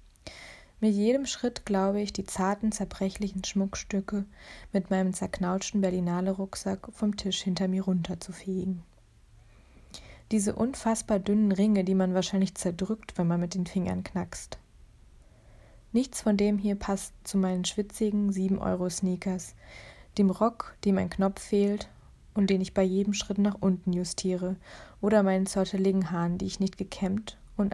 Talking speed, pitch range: 140 wpm, 185-210 Hz